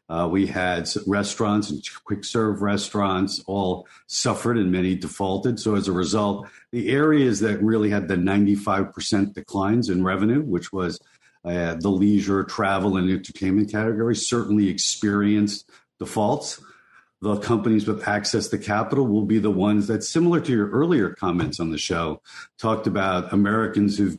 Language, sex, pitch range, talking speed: English, male, 95-110 Hz, 150 wpm